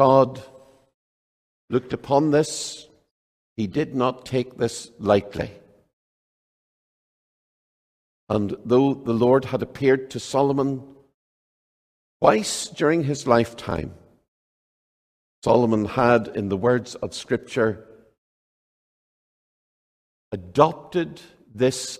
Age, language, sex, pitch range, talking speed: 60-79, English, male, 105-135 Hz, 85 wpm